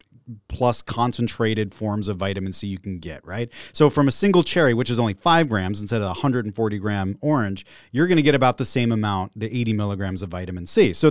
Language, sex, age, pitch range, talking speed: English, male, 30-49, 110-165 Hz, 215 wpm